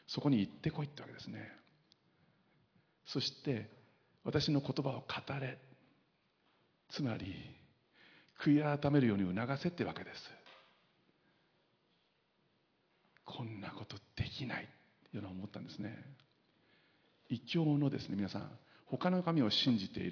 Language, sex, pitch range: Japanese, male, 110-140 Hz